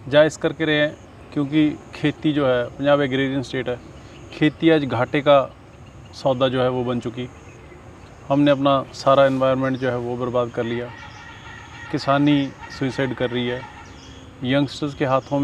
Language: Hindi